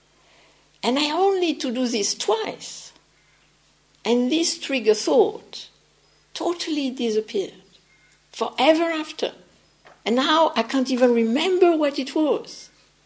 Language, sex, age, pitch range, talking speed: English, female, 60-79, 240-335 Hz, 115 wpm